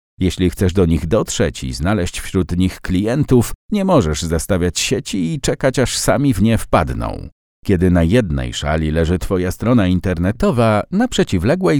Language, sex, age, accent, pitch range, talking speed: Polish, male, 50-69, native, 85-130 Hz, 160 wpm